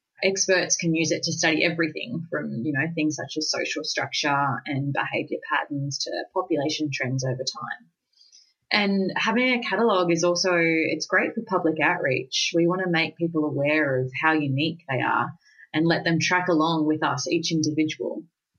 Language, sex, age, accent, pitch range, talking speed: English, female, 20-39, Australian, 150-180 Hz, 175 wpm